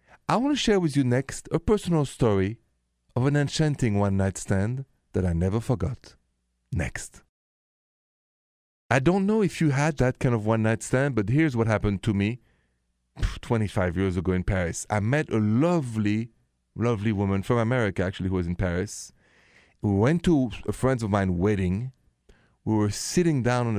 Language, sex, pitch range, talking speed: English, male, 95-130 Hz, 170 wpm